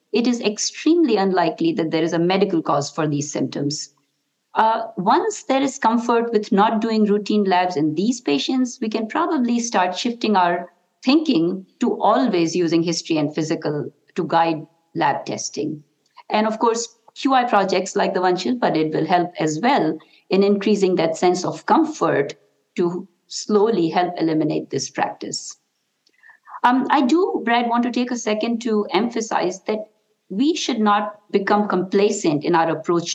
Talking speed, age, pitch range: 160 wpm, 50-69, 170-230 Hz